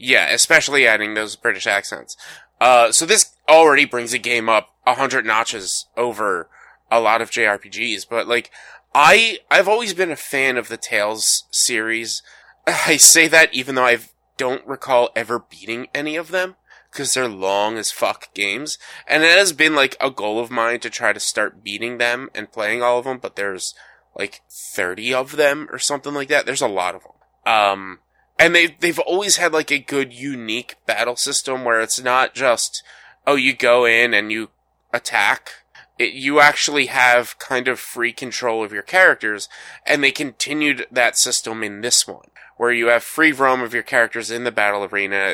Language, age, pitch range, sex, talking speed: English, 20-39, 115-145 Hz, male, 185 wpm